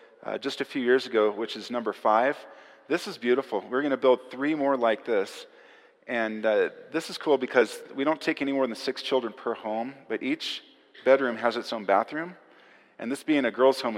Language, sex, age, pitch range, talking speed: English, male, 40-59, 105-140 Hz, 215 wpm